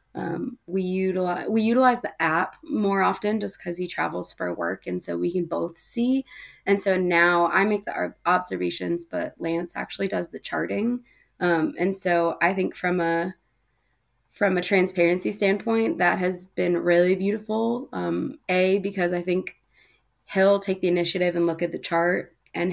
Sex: female